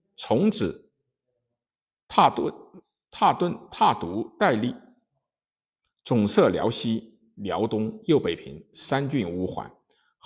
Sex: male